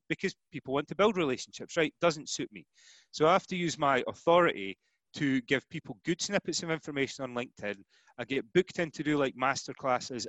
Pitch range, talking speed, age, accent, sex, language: 125-165 Hz, 200 wpm, 30-49, British, male, English